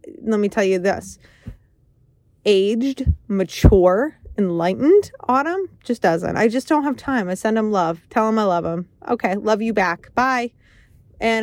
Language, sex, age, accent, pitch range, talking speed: English, female, 20-39, American, 185-230 Hz, 165 wpm